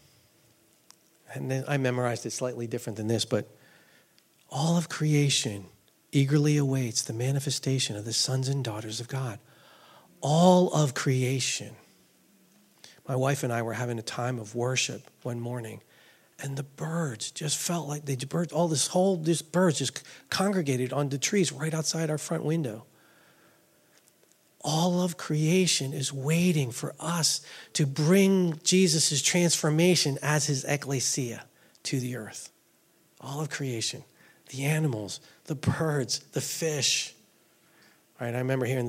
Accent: American